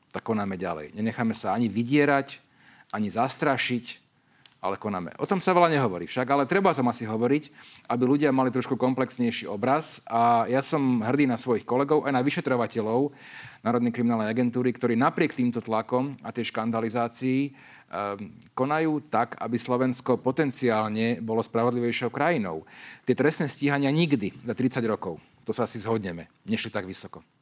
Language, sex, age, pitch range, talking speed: Slovak, male, 40-59, 115-140 Hz, 155 wpm